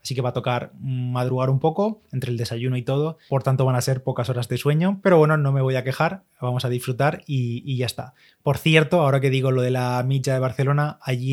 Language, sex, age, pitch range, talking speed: Spanish, male, 20-39, 125-140 Hz, 255 wpm